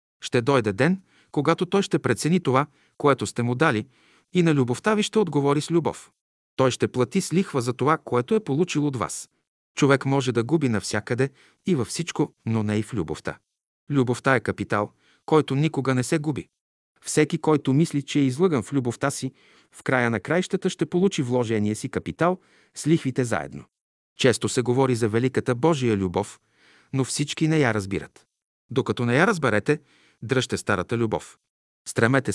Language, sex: Bulgarian, male